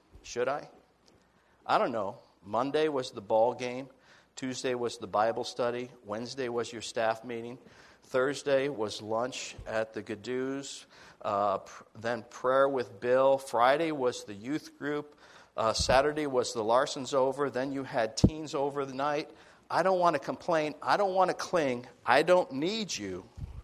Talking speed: 160 wpm